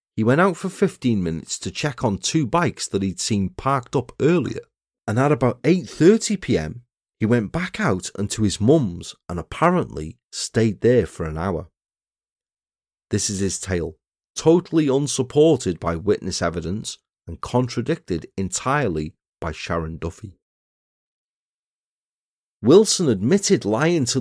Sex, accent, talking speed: male, British, 135 wpm